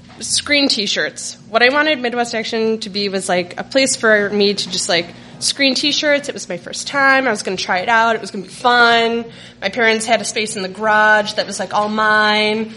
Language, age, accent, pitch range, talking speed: English, 20-39, American, 195-235 Hz, 240 wpm